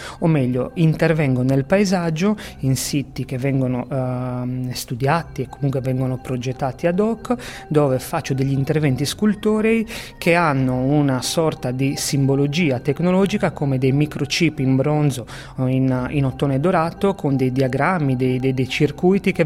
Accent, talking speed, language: Italian, 145 wpm, English